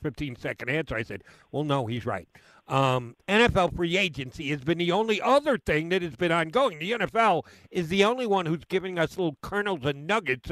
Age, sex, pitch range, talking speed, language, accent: 50-69, male, 130-165 Hz, 205 wpm, English, American